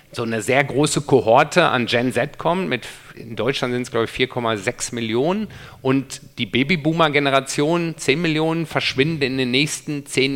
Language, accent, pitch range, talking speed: German, German, 125-155 Hz, 155 wpm